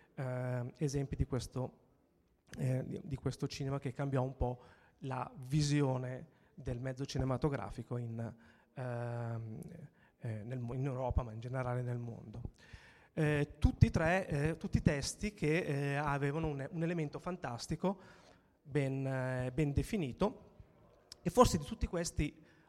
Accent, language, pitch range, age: native, Italian, 125-155 Hz, 30-49